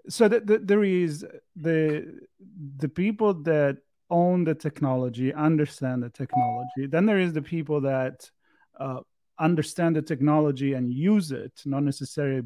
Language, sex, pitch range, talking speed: English, male, 130-155 Hz, 145 wpm